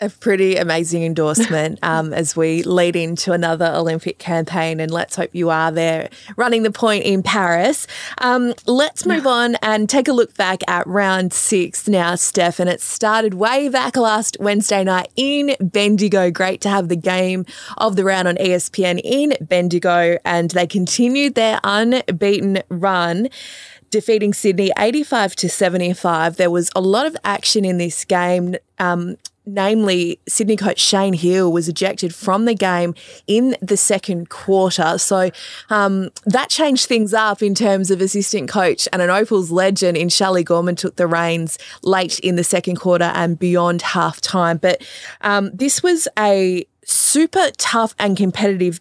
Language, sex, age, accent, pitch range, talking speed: English, female, 20-39, Australian, 175-215 Hz, 160 wpm